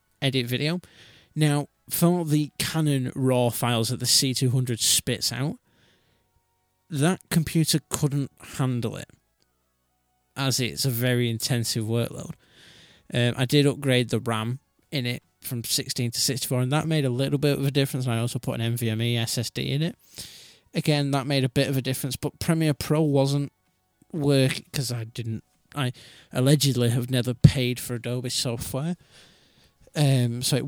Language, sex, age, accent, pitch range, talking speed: English, male, 20-39, British, 120-145 Hz, 155 wpm